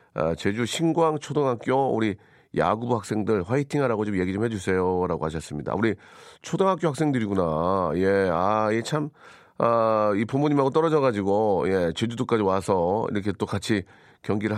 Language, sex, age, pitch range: Korean, male, 40-59, 105-150 Hz